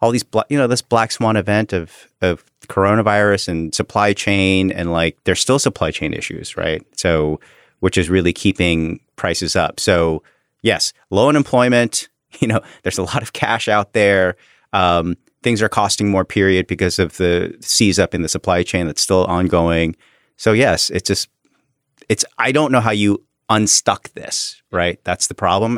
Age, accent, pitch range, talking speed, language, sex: 30-49, American, 90-110 Hz, 175 wpm, English, male